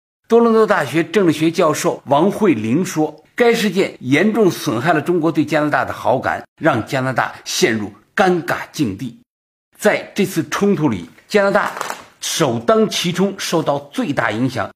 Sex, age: male, 50-69